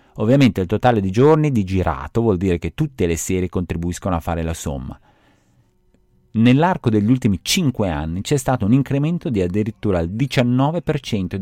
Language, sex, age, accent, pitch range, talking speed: Italian, male, 30-49, native, 80-115 Hz, 165 wpm